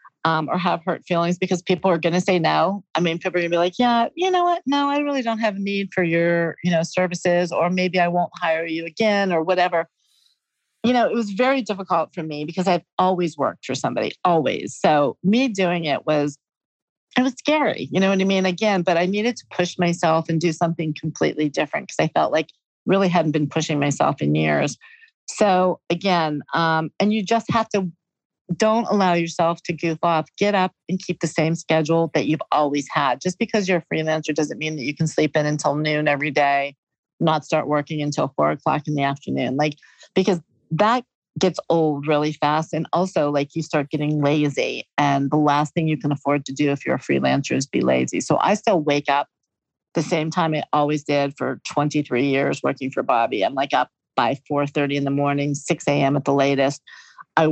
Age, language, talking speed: 50-69, English, 215 wpm